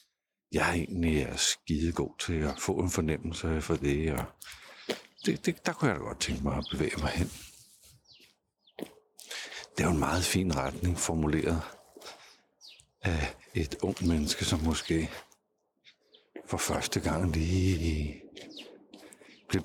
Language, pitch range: Danish, 80-90 Hz